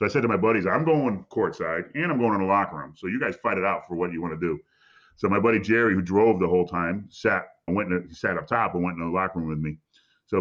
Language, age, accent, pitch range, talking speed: English, 30-49, American, 90-115 Hz, 315 wpm